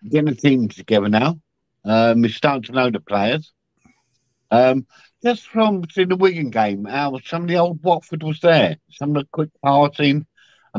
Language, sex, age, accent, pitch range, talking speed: English, male, 50-69, British, 110-150 Hz, 180 wpm